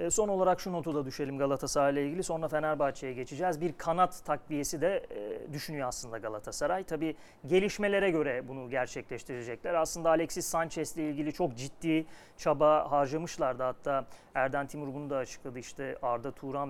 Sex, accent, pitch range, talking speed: male, native, 140-175 Hz, 150 wpm